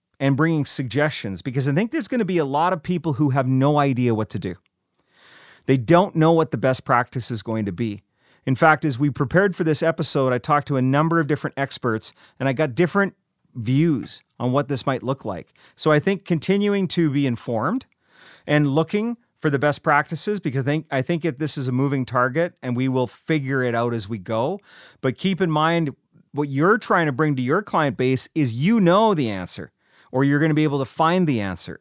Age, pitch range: 30-49, 125-160 Hz